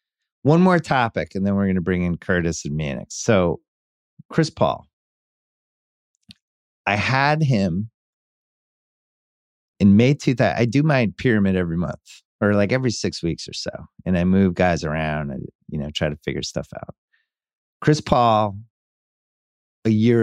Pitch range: 80-105 Hz